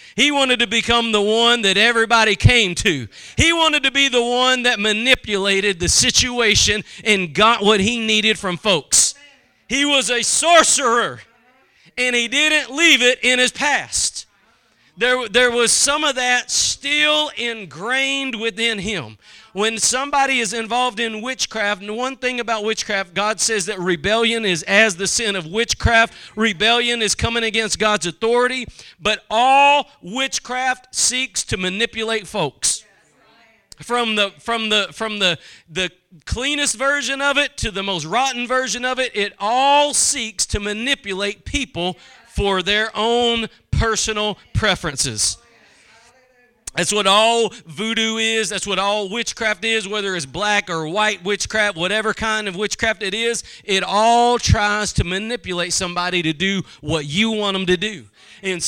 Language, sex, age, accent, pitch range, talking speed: English, male, 40-59, American, 205-245 Hz, 150 wpm